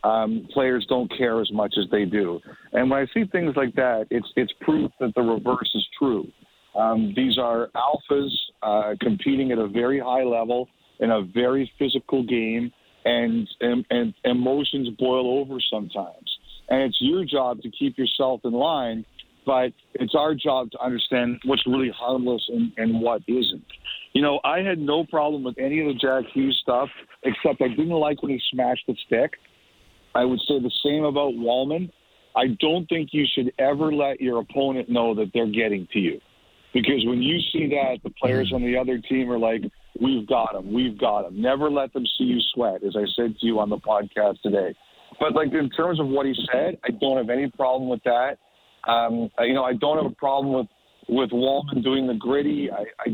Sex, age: male, 50-69